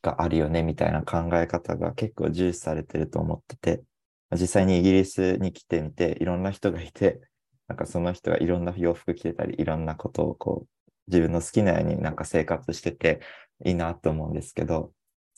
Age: 20-39